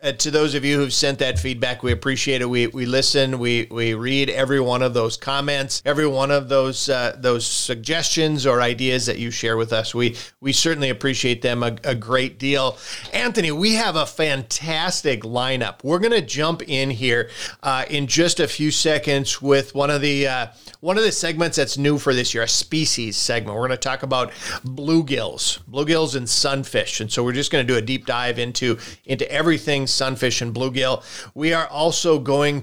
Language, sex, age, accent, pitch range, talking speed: English, male, 40-59, American, 120-150 Hz, 200 wpm